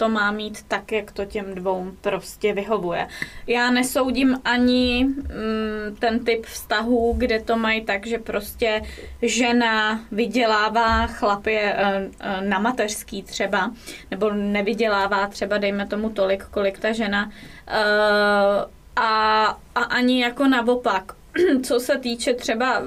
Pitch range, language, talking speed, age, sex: 210-245 Hz, English, 125 wpm, 20-39, female